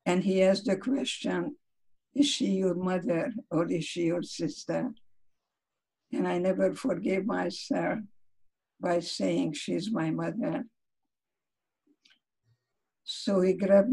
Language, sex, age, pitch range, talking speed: English, female, 60-79, 190-255 Hz, 115 wpm